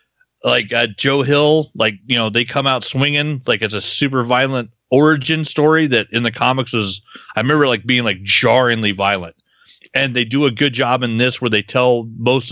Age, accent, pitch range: 30-49, American, 110-135 Hz